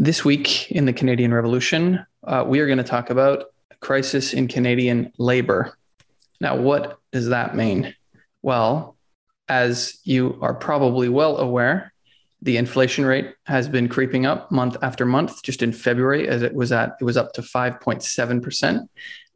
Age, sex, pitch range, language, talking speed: 20-39, male, 120-140 Hz, English, 155 wpm